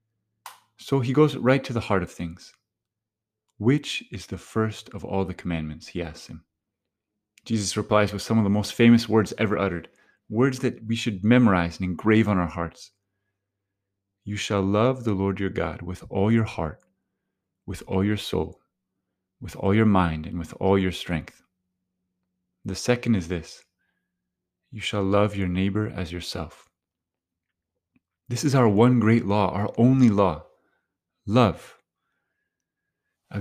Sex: male